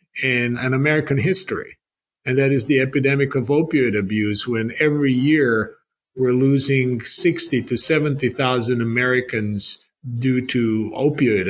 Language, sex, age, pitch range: English, male, 50-69, 130-160 Hz